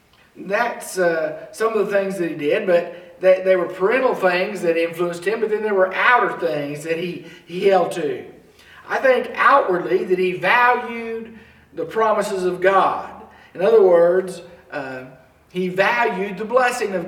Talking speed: 170 wpm